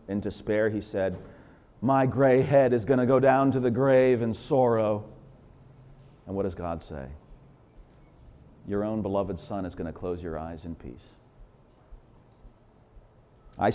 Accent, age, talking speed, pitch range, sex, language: American, 40-59, 155 wpm, 105-135 Hz, male, English